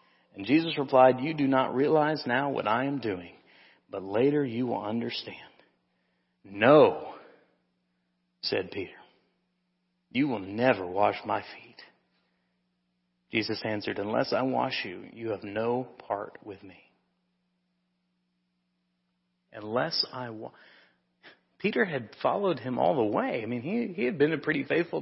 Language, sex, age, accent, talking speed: English, male, 40-59, American, 135 wpm